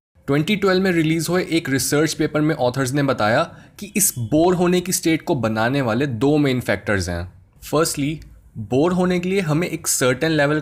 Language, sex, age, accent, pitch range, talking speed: Hindi, male, 20-39, native, 115-160 Hz, 185 wpm